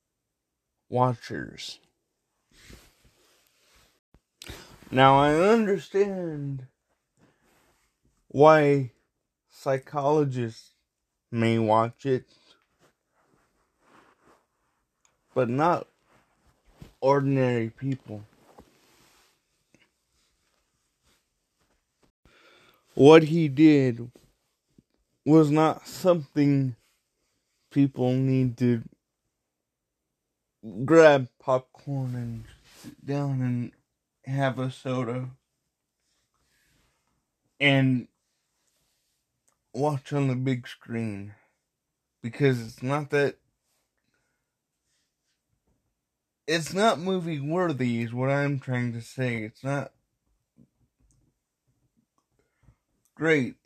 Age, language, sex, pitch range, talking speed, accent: 20-39, English, male, 120-145 Hz, 60 wpm, American